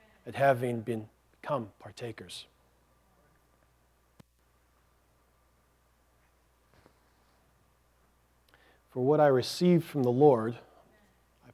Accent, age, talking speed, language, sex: American, 40-59, 60 wpm, English, male